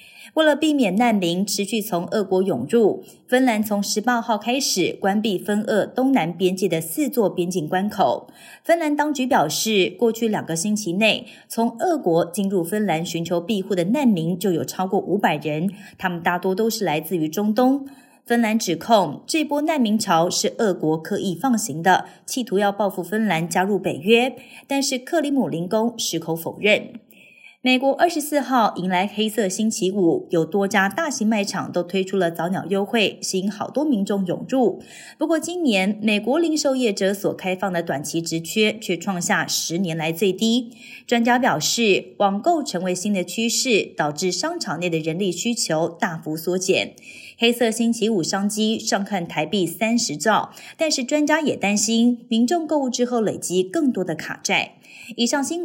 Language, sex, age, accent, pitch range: Chinese, female, 30-49, native, 180-245 Hz